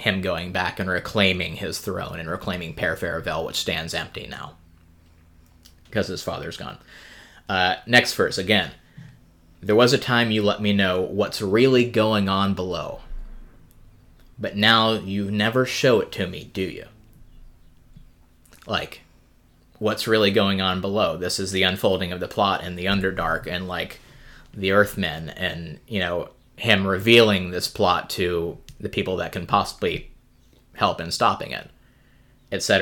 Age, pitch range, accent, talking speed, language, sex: 20-39, 90-110 Hz, American, 155 wpm, English, male